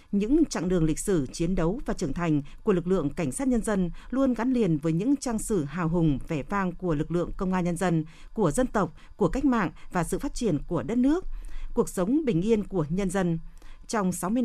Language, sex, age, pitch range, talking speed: Vietnamese, female, 50-69, 170-235 Hz, 235 wpm